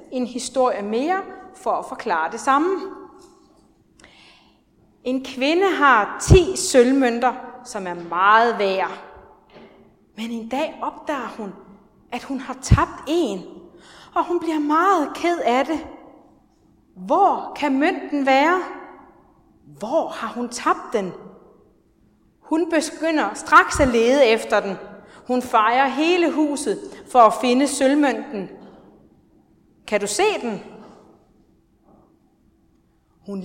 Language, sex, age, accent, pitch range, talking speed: Danish, female, 30-49, native, 220-325 Hz, 115 wpm